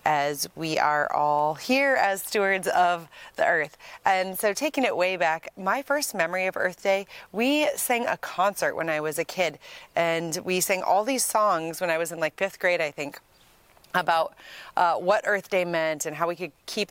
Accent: American